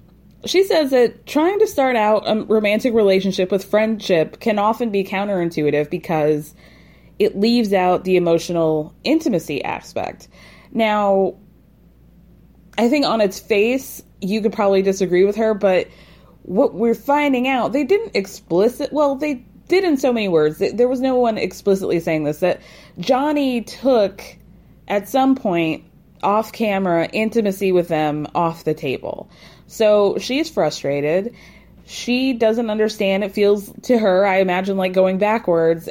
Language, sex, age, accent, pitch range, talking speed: English, female, 20-39, American, 180-240 Hz, 145 wpm